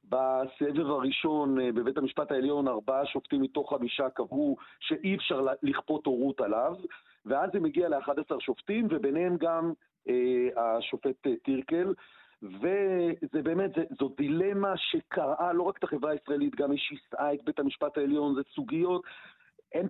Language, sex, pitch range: Hebrew, male, 135-180 Hz